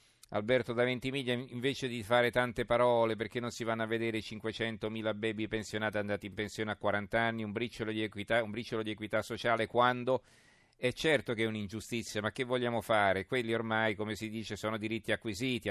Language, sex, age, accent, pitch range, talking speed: Italian, male, 40-59, native, 105-125 Hz, 180 wpm